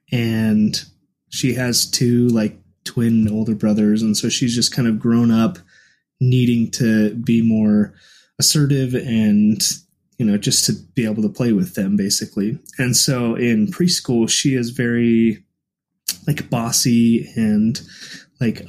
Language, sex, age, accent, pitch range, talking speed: English, male, 20-39, American, 115-140 Hz, 140 wpm